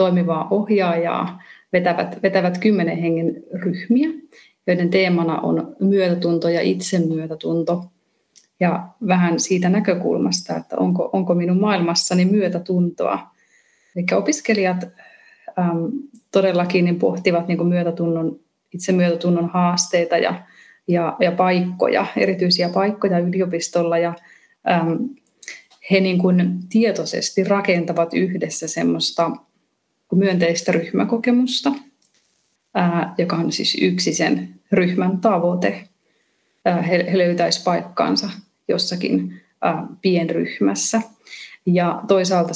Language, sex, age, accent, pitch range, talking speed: Finnish, female, 30-49, native, 170-195 Hz, 80 wpm